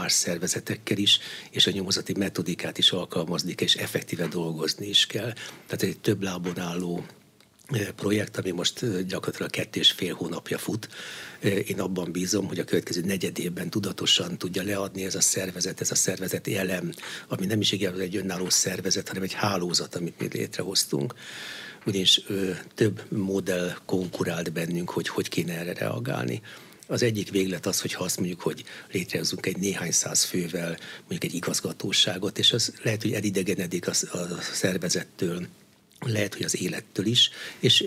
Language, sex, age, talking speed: Hungarian, male, 60-79, 155 wpm